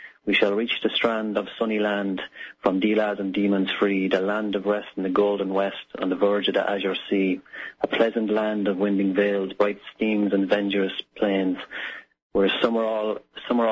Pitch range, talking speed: 100-110 Hz, 190 wpm